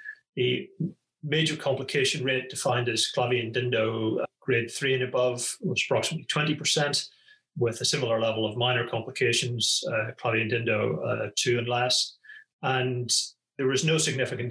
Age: 30-49